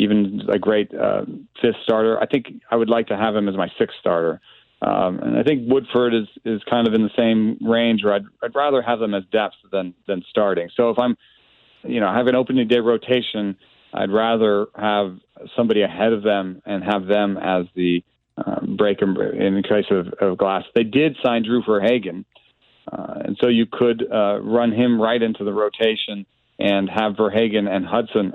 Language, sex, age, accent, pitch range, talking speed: English, male, 40-59, American, 105-120 Hz, 200 wpm